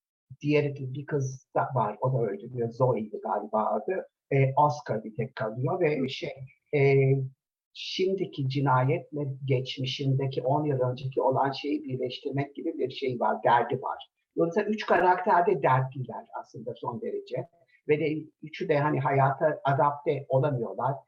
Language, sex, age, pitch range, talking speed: Turkish, male, 60-79, 130-160 Hz, 140 wpm